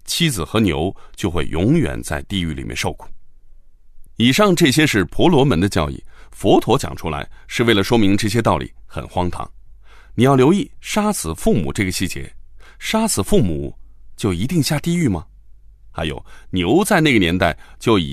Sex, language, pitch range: male, Chinese, 80-125 Hz